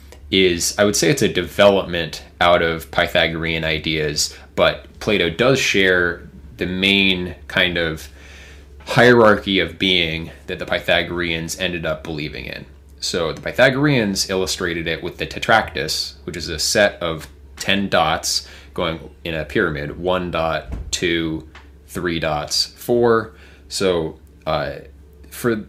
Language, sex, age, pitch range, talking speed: English, male, 20-39, 80-95 Hz, 135 wpm